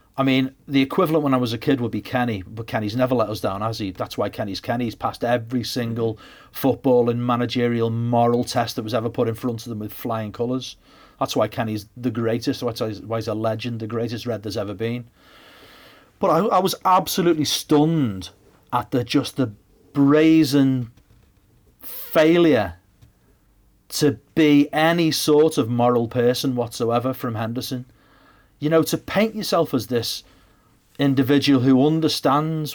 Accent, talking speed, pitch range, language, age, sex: British, 165 wpm, 115-145 Hz, English, 40-59, male